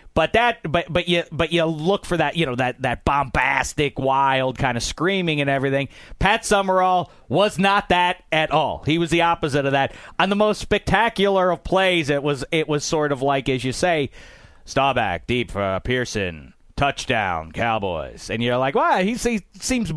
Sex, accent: male, American